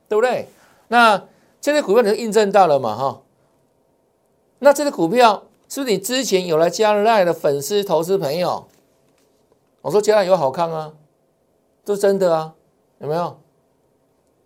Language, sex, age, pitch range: Chinese, male, 60-79, 165-215 Hz